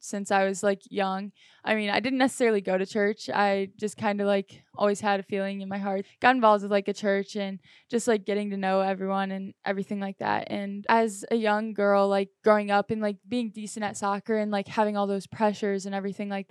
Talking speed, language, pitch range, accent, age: 235 wpm, English, 195-210 Hz, American, 10-29